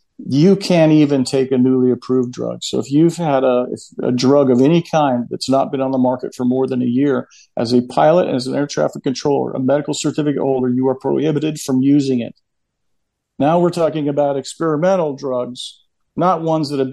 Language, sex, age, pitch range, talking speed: English, male, 50-69, 130-155 Hz, 200 wpm